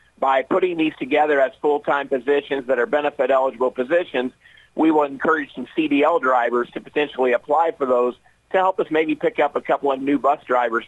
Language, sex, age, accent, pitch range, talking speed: English, male, 40-59, American, 135-165 Hz, 190 wpm